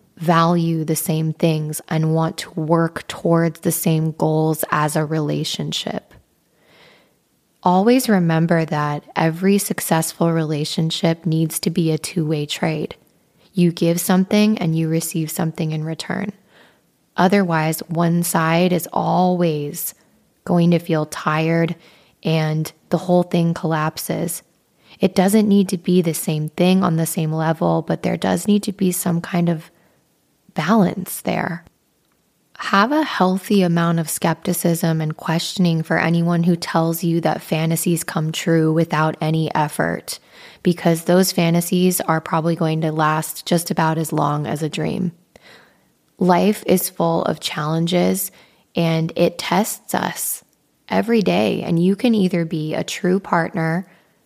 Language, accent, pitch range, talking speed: English, American, 160-180 Hz, 140 wpm